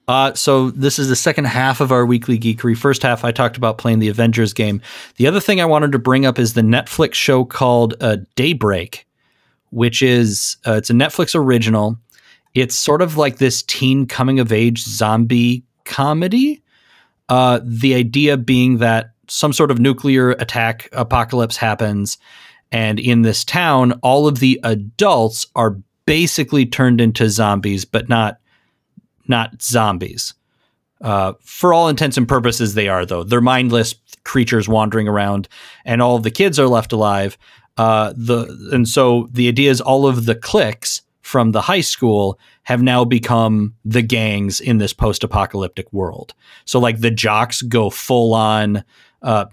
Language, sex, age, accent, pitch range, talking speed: English, male, 30-49, American, 110-130 Hz, 165 wpm